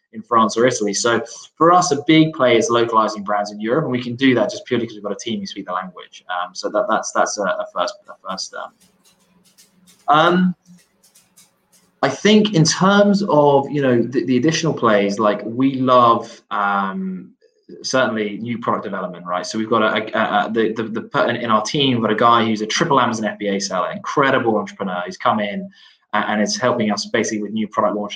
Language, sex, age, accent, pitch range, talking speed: English, male, 20-39, British, 105-145 Hz, 215 wpm